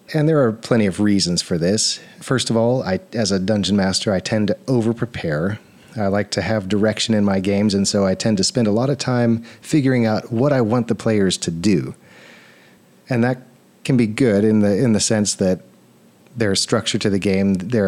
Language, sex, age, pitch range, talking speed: English, male, 40-59, 95-120 Hz, 215 wpm